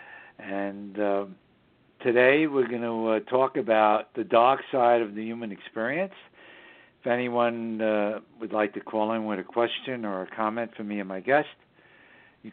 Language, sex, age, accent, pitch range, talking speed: English, male, 60-79, American, 110-125 Hz, 170 wpm